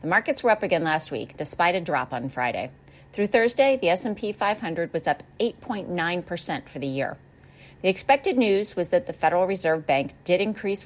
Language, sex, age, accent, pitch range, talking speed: English, female, 40-59, American, 155-220 Hz, 195 wpm